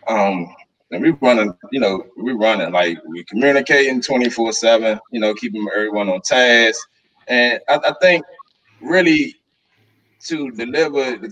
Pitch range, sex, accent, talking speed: 105-130 Hz, male, American, 140 wpm